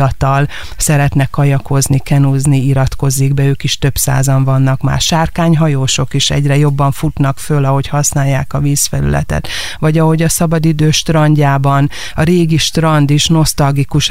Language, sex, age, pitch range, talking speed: Hungarian, female, 30-49, 140-160 Hz, 130 wpm